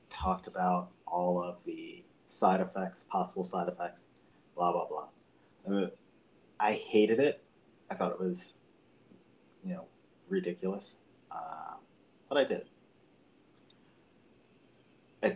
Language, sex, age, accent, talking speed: English, male, 30-49, American, 115 wpm